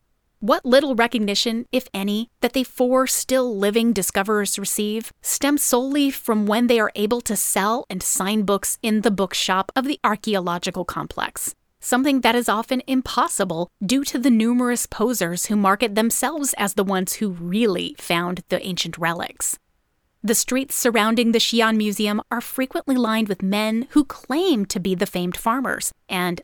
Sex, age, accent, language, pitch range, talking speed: female, 30-49, American, English, 200-250 Hz, 160 wpm